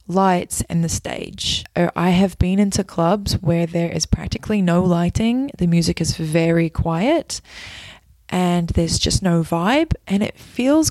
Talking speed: 155 wpm